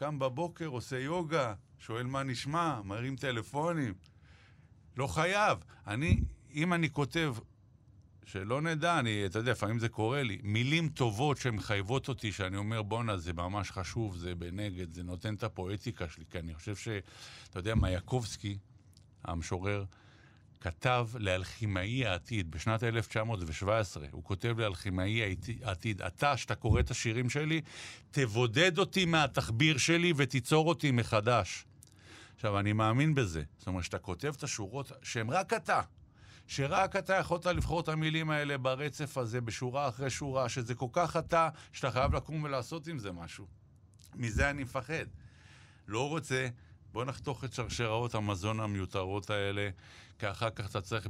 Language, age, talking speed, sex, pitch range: Hebrew, 50-69, 145 wpm, male, 100-135 Hz